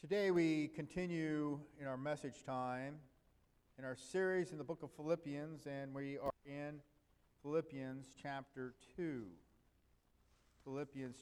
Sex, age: male, 50-69